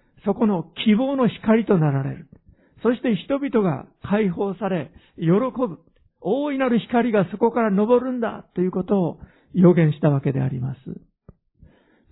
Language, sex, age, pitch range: Japanese, male, 50-69, 165-225 Hz